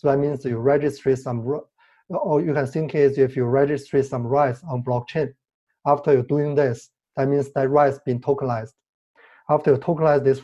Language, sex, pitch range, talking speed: English, male, 125-145 Hz, 190 wpm